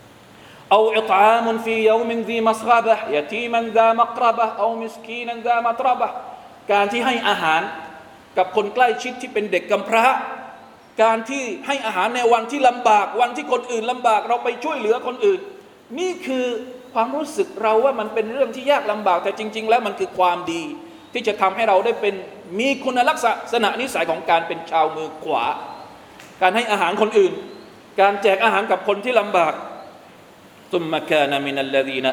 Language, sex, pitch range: Thai, male, 180-235 Hz